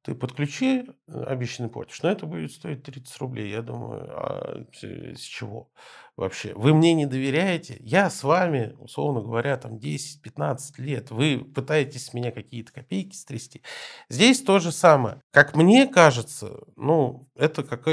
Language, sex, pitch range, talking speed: Russian, male, 120-155 Hz, 145 wpm